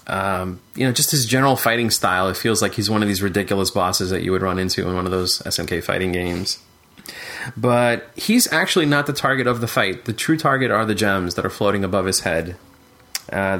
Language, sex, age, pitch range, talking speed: English, male, 30-49, 100-115 Hz, 225 wpm